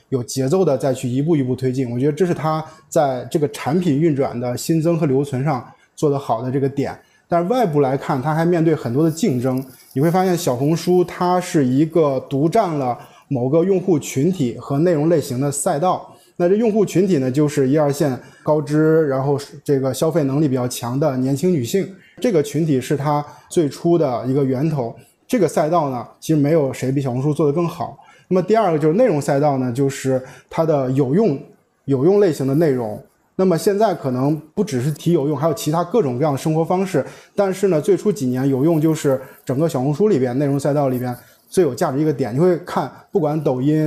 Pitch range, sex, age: 135-175 Hz, male, 20-39